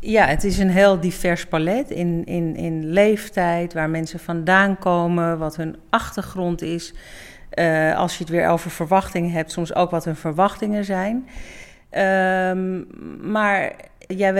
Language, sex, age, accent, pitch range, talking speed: Dutch, female, 40-59, Dutch, 160-190 Hz, 145 wpm